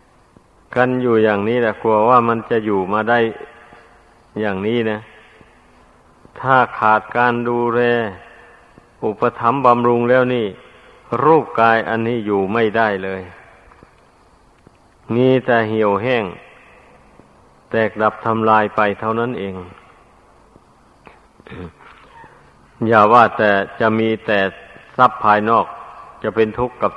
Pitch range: 105-120 Hz